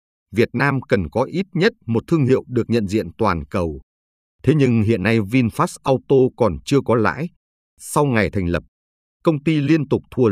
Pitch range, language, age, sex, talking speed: 100-140 Hz, Vietnamese, 50-69, male, 190 wpm